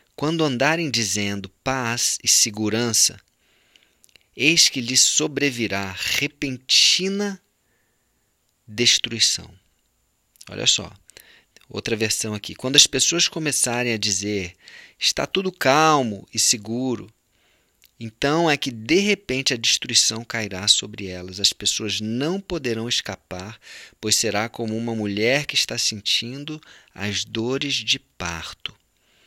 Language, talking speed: Portuguese, 115 wpm